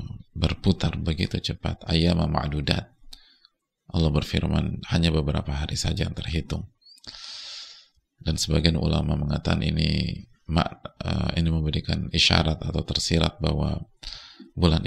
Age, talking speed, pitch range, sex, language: 30-49, 95 wpm, 80-90 Hz, male, English